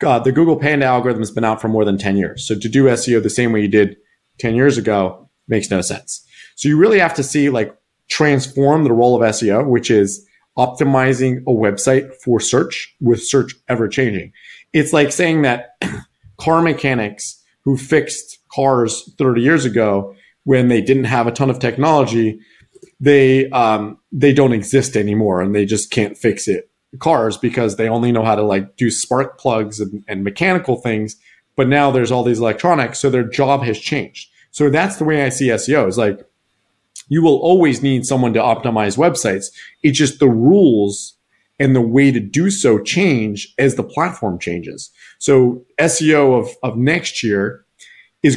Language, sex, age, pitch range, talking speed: English, male, 30-49, 110-140 Hz, 185 wpm